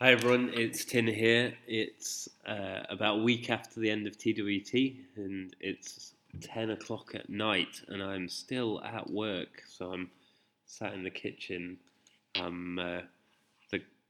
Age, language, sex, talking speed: 20-39, English, male, 150 wpm